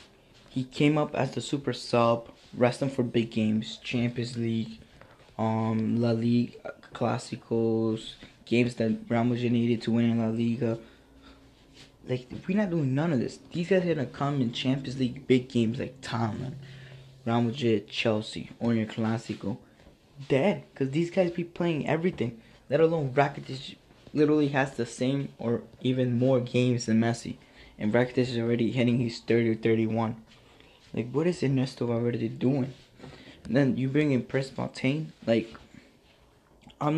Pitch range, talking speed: 110-130 Hz, 155 wpm